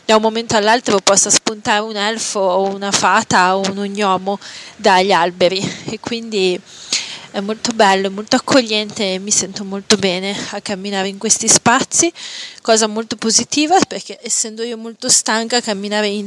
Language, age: Italian, 20-39